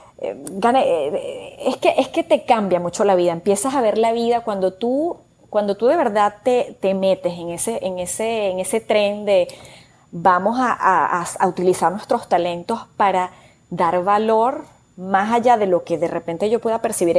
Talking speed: 155 wpm